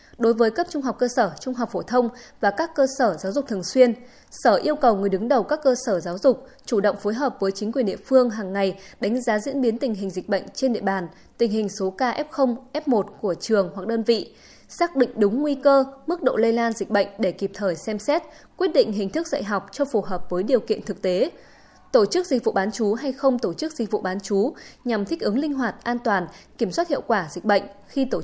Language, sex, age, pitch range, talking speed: Vietnamese, female, 20-39, 200-270 Hz, 260 wpm